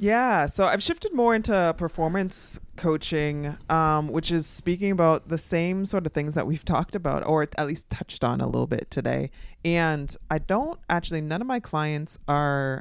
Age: 20-39